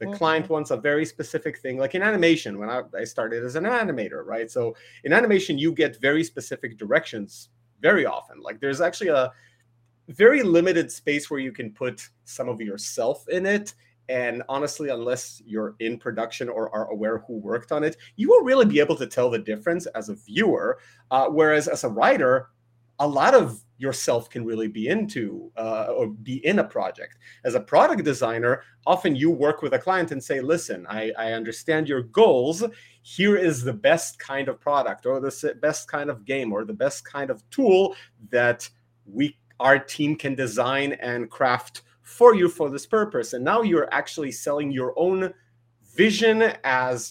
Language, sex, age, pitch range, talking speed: English, male, 30-49, 120-165 Hz, 185 wpm